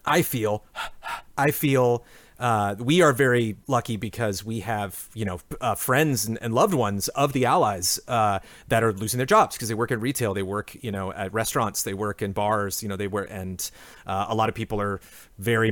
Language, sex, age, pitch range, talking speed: English, male, 30-49, 95-120 Hz, 215 wpm